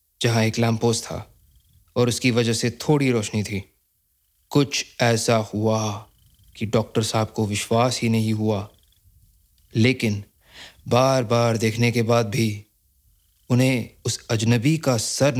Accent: native